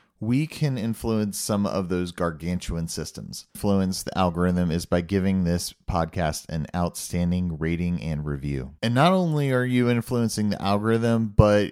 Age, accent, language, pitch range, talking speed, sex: 30-49, American, English, 85-110 Hz, 155 wpm, male